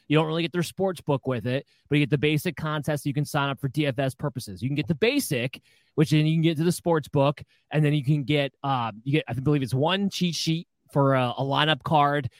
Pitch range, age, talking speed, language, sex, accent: 130-165 Hz, 20-39, 270 wpm, English, male, American